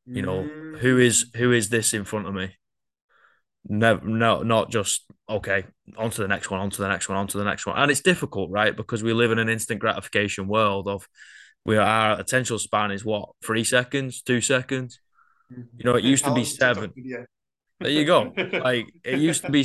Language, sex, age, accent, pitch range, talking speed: English, male, 20-39, British, 105-120 Hz, 210 wpm